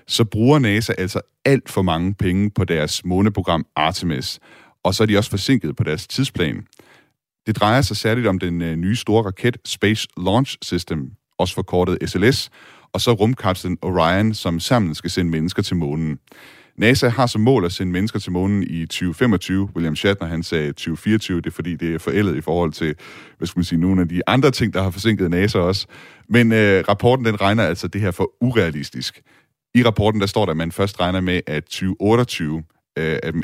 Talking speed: 195 wpm